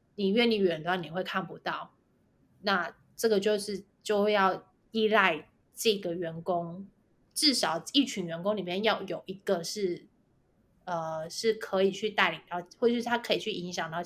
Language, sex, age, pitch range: Chinese, female, 20-39, 175-205 Hz